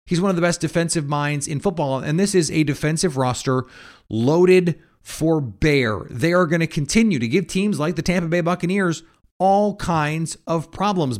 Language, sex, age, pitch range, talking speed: English, male, 30-49, 135-180 Hz, 190 wpm